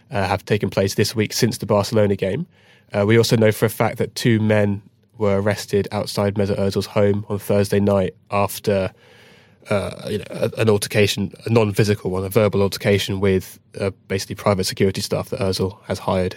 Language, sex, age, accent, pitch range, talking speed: English, male, 20-39, British, 100-110 Hz, 185 wpm